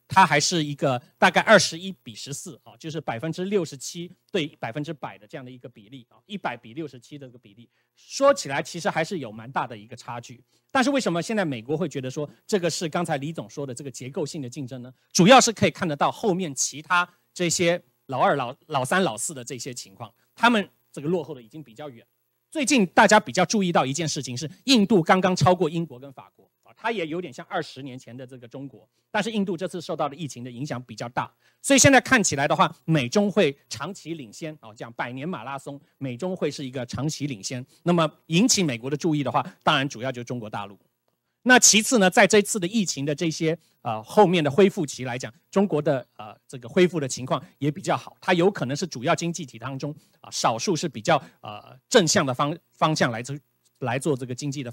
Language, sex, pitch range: Chinese, male, 130-180 Hz